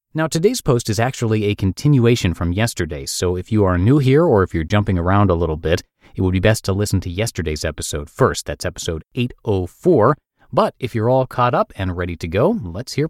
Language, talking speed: English, 220 wpm